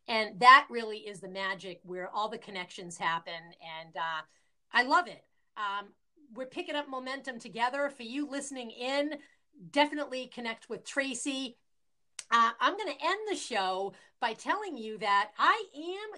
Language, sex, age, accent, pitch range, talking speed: English, female, 40-59, American, 200-280 Hz, 160 wpm